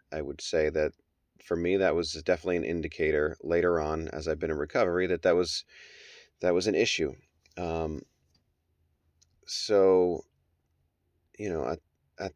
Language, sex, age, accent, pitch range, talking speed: English, male, 30-49, American, 80-90 Hz, 150 wpm